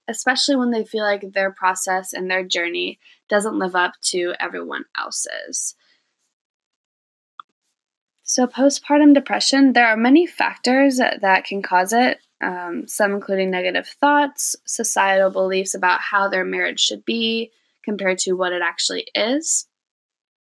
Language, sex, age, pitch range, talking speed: English, female, 10-29, 190-260 Hz, 135 wpm